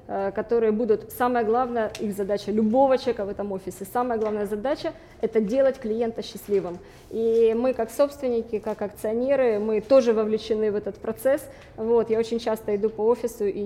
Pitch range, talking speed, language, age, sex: 210-255 Hz, 165 wpm, Russian, 20-39, female